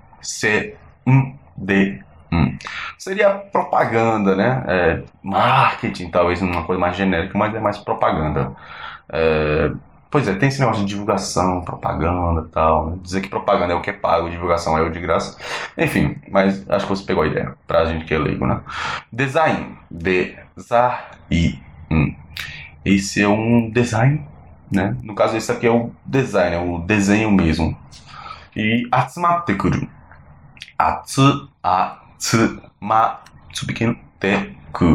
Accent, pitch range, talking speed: Brazilian, 85-125 Hz, 135 wpm